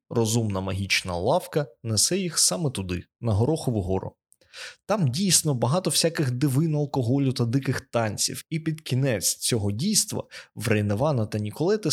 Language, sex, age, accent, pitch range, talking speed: Ukrainian, male, 20-39, native, 110-160 Hz, 140 wpm